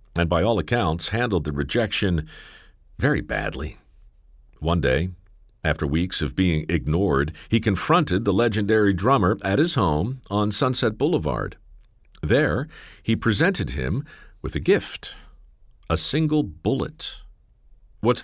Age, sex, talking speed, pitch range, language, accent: 50-69, male, 125 wpm, 75-115 Hz, English, American